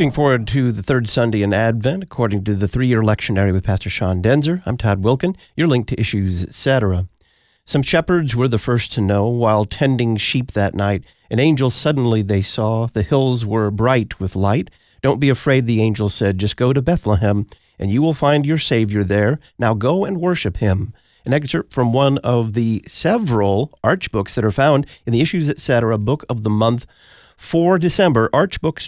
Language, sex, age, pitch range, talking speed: English, male, 40-59, 105-140 Hz, 195 wpm